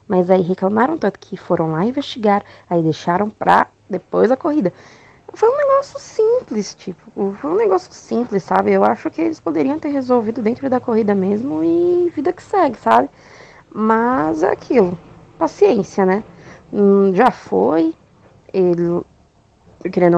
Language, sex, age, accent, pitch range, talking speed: Portuguese, female, 20-39, Brazilian, 175-295 Hz, 145 wpm